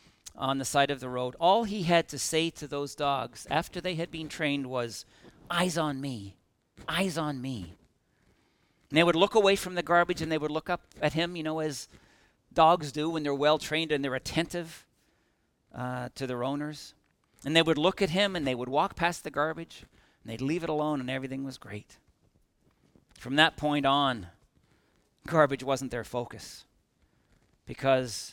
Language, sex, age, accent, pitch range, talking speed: English, male, 50-69, American, 120-165 Hz, 185 wpm